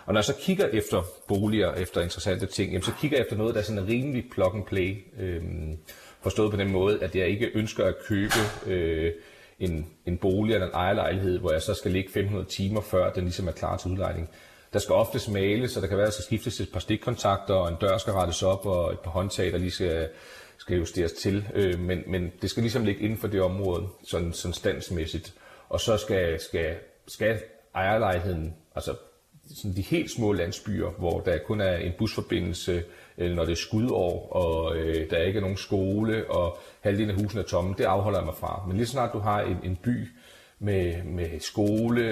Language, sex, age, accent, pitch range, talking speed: Danish, male, 30-49, native, 90-105 Hz, 215 wpm